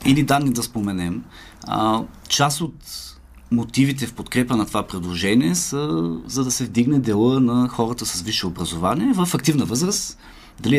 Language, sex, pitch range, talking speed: Bulgarian, male, 100-135 Hz, 155 wpm